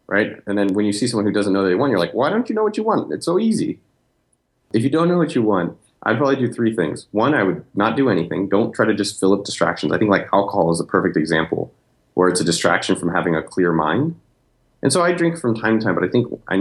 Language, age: English, 30-49